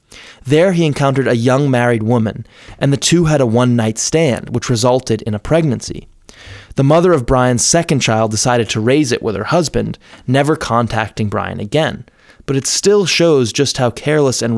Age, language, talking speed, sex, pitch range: 20-39, English, 180 wpm, male, 115-145 Hz